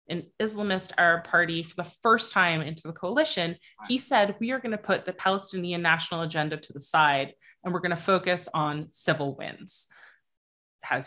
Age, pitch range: 20-39, 150-185 Hz